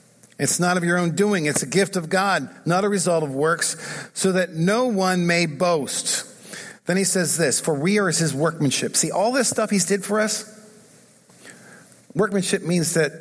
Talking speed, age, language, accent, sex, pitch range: 190 wpm, 50-69, English, American, male, 155-195 Hz